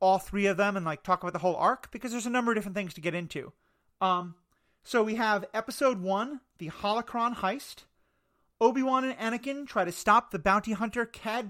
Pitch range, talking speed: 180-235 Hz, 210 wpm